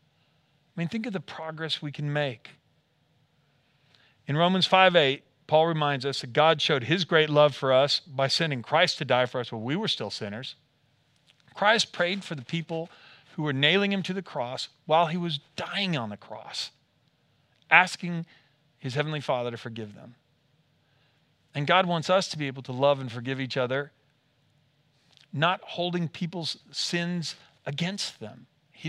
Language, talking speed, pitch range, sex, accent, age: English, 170 wpm, 130-165 Hz, male, American, 40-59